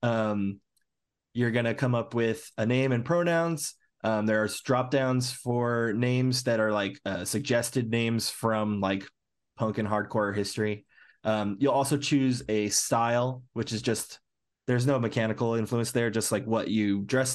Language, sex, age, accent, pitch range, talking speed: English, male, 20-39, American, 105-125 Hz, 170 wpm